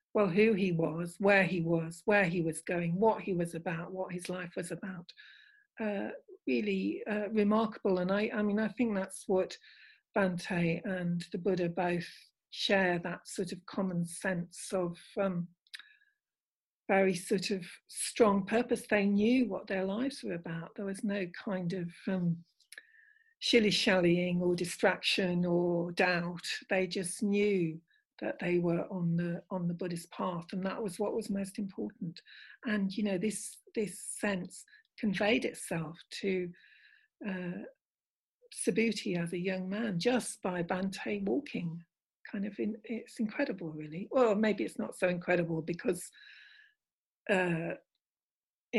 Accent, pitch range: British, 175-215 Hz